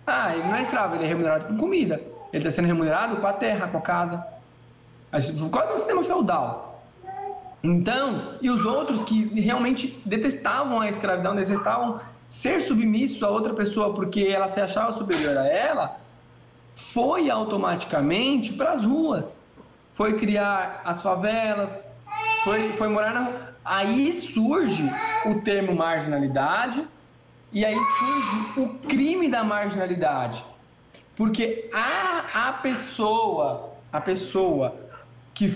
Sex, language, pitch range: male, Portuguese, 190-270 Hz